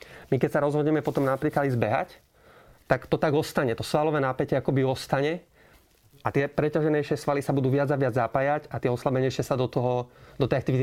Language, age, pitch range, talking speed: Slovak, 30-49, 125-140 Hz, 200 wpm